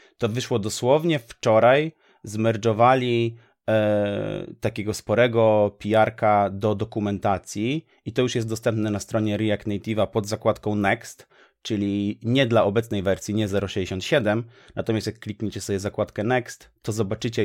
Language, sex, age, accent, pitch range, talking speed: Polish, male, 30-49, native, 100-115 Hz, 125 wpm